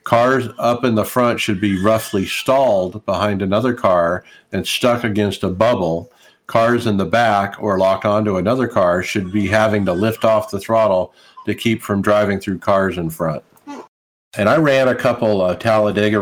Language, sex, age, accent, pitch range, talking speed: English, male, 50-69, American, 100-120 Hz, 180 wpm